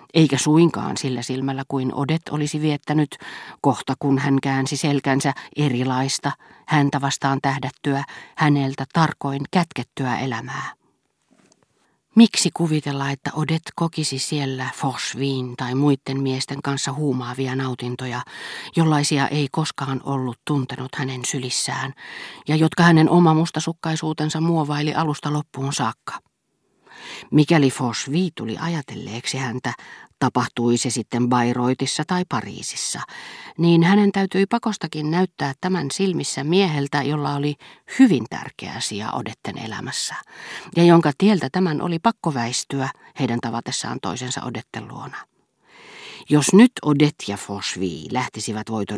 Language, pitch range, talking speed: Finnish, 130-160 Hz, 115 wpm